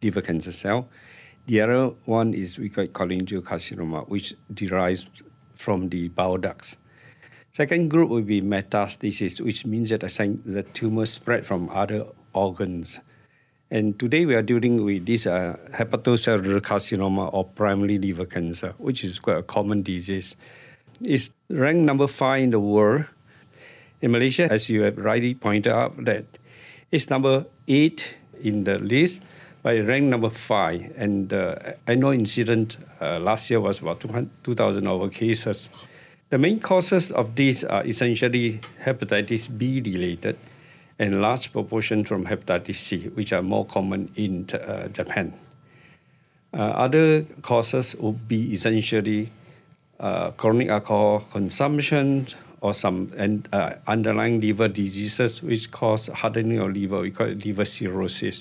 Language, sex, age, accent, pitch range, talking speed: English, male, 50-69, Malaysian, 100-125 Hz, 140 wpm